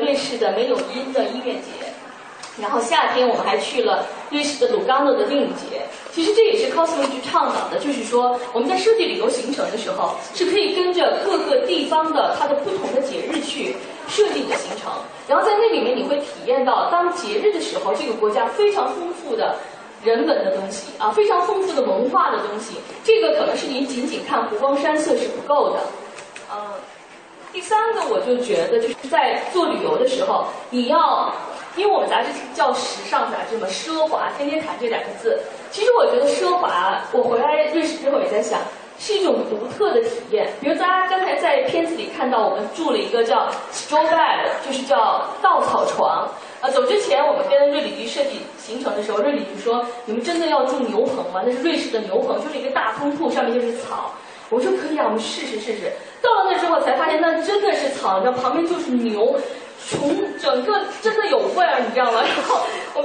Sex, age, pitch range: female, 20-39, 270-420 Hz